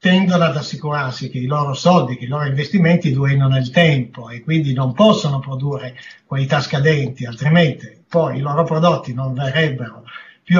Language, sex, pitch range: Italian, male, 140-180 Hz